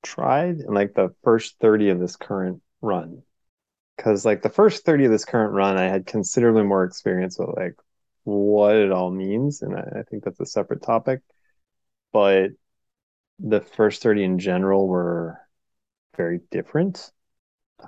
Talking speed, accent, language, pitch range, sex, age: 165 wpm, American, English, 90-115 Hz, male, 20-39